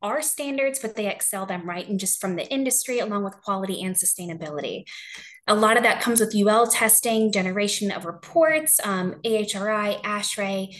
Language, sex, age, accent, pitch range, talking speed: English, female, 20-39, American, 185-225 Hz, 170 wpm